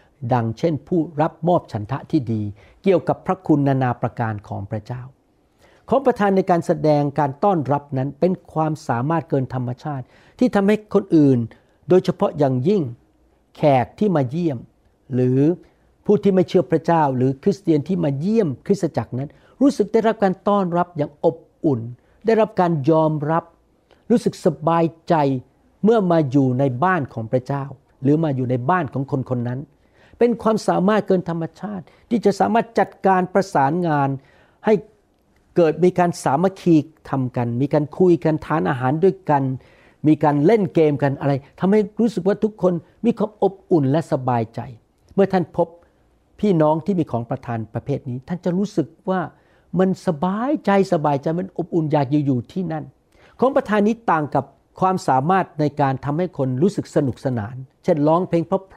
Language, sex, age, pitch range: Thai, male, 60-79, 140-190 Hz